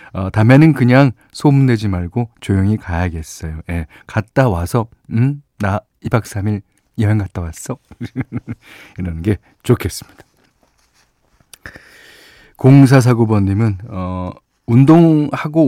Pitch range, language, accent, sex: 100-140 Hz, Korean, native, male